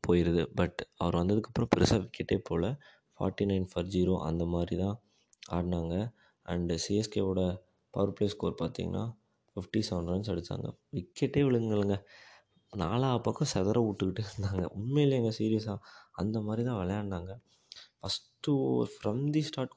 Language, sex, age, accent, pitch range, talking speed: Tamil, male, 20-39, native, 90-110 Hz, 125 wpm